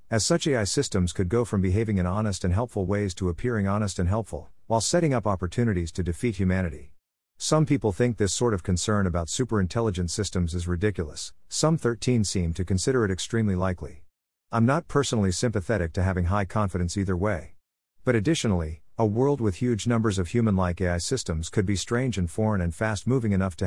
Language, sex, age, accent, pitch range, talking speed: English, male, 50-69, American, 90-115 Hz, 190 wpm